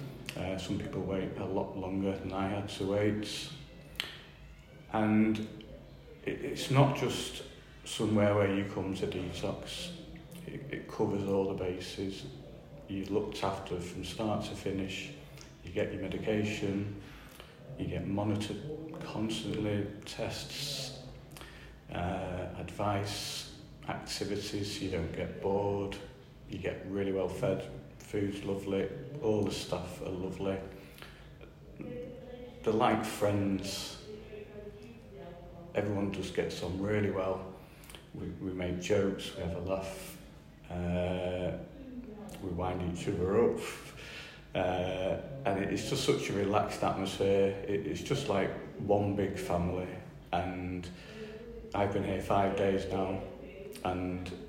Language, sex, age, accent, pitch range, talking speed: English, male, 40-59, British, 95-110 Hz, 120 wpm